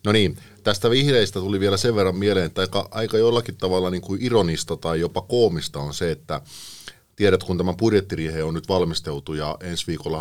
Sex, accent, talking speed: male, native, 195 wpm